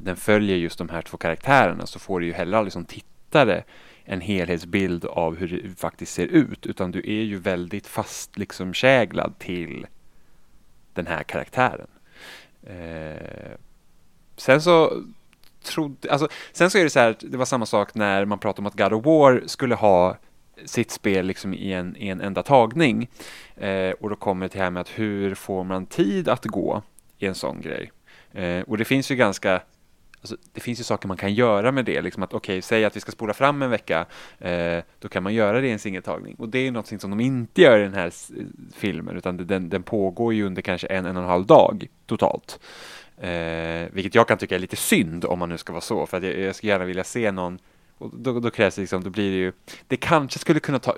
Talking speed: 220 wpm